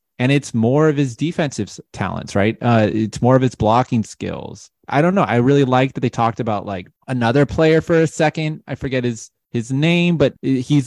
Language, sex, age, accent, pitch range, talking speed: English, male, 20-39, American, 115-140 Hz, 210 wpm